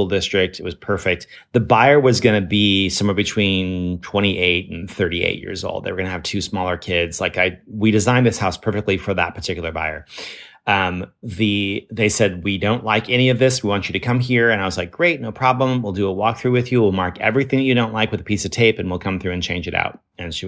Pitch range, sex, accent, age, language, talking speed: 95-115 Hz, male, American, 30-49, English, 250 wpm